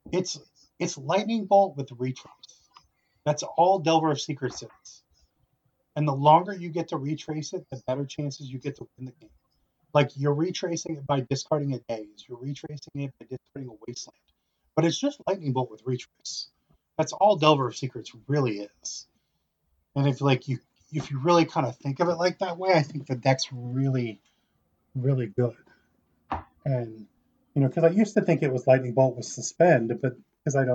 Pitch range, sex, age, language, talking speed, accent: 120-150 Hz, male, 30-49, English, 190 wpm, American